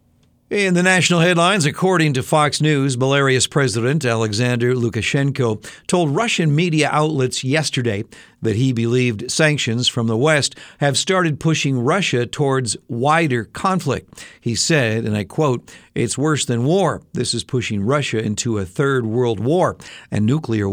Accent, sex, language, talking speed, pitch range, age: American, male, English, 150 wpm, 115-155 Hz, 50-69